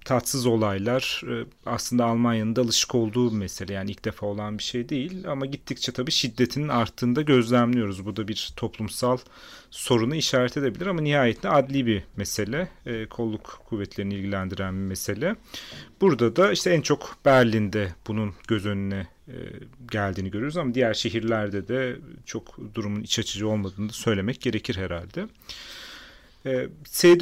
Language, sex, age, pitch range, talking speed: Turkish, male, 40-59, 105-140 Hz, 140 wpm